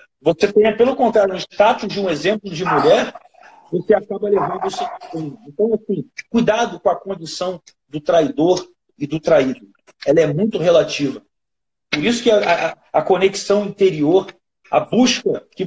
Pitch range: 170-225 Hz